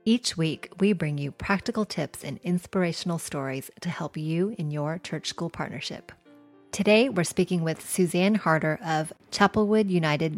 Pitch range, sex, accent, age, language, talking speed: 150-180 Hz, female, American, 30-49, English, 155 wpm